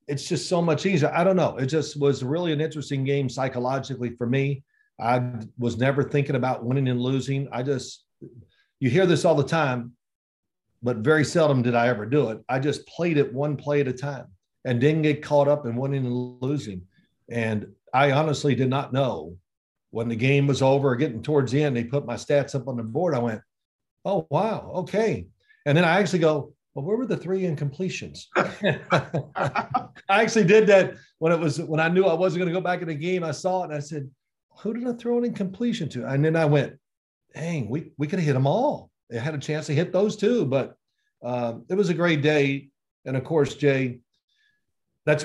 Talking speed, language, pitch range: 215 wpm, English, 125-160 Hz